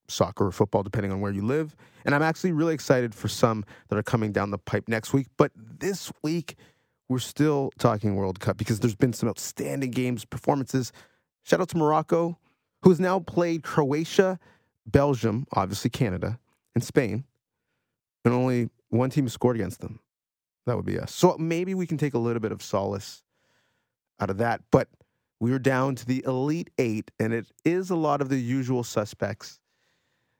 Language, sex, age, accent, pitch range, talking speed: English, male, 30-49, American, 110-150 Hz, 185 wpm